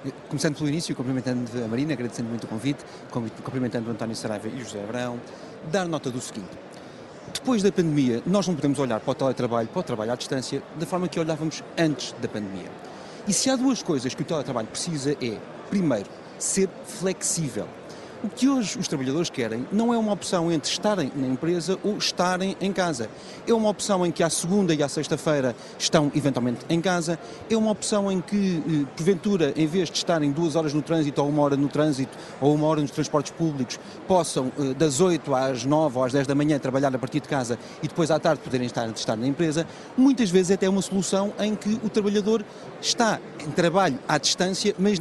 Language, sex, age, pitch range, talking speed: Portuguese, male, 40-59, 130-185 Hz, 205 wpm